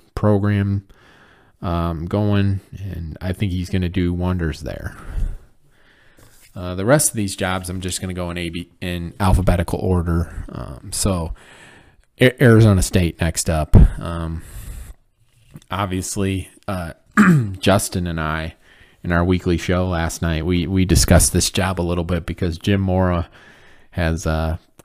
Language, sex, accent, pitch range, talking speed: English, male, American, 80-100 Hz, 145 wpm